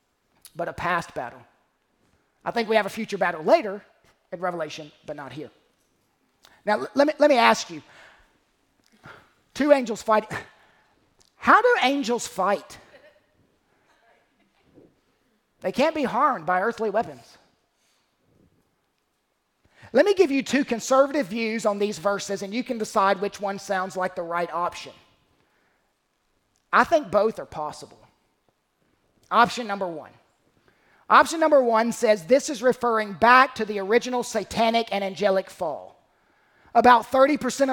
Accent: American